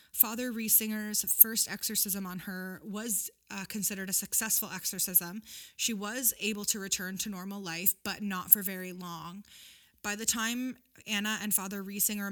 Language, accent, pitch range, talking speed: English, American, 190-215 Hz, 155 wpm